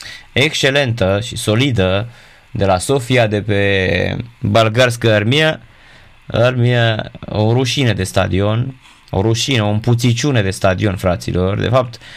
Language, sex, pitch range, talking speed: Romanian, male, 105-130 Hz, 115 wpm